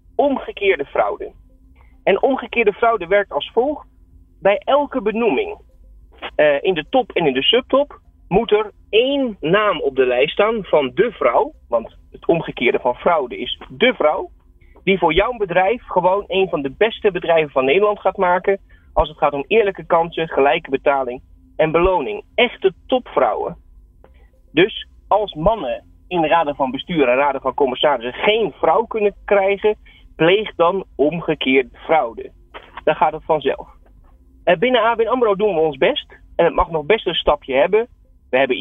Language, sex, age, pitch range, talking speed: Dutch, male, 30-49, 145-230 Hz, 165 wpm